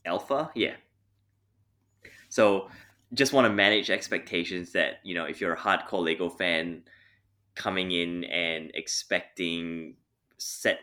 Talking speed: 120 wpm